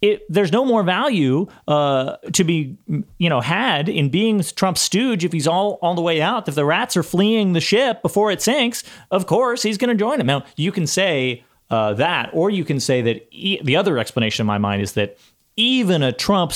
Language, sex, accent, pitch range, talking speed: English, male, American, 115-175 Hz, 225 wpm